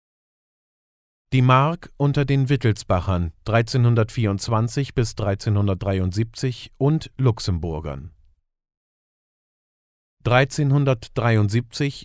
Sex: male